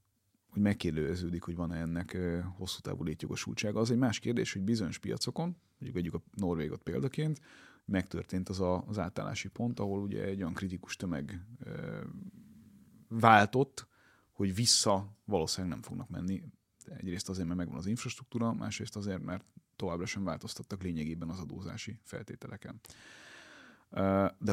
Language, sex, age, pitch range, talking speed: Hungarian, male, 30-49, 90-110 Hz, 135 wpm